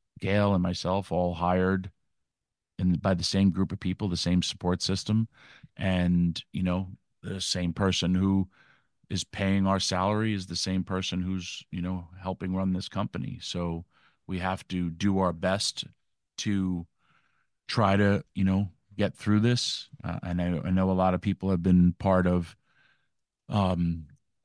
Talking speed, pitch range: 165 wpm, 90-110 Hz